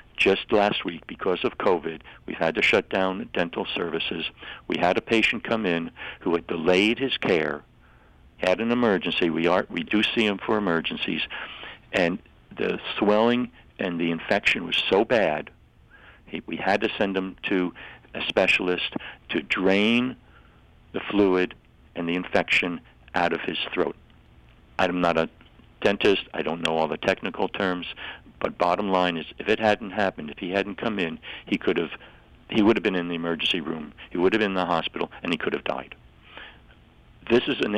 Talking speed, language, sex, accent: 180 wpm, English, male, American